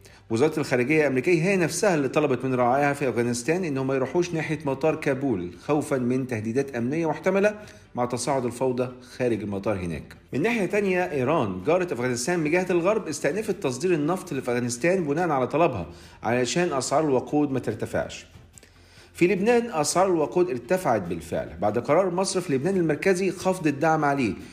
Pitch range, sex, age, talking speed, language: 120-165 Hz, male, 50-69, 150 wpm, Arabic